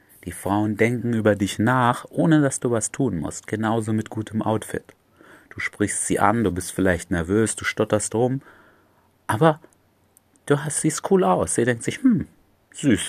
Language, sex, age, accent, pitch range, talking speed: German, male, 30-49, German, 90-110 Hz, 175 wpm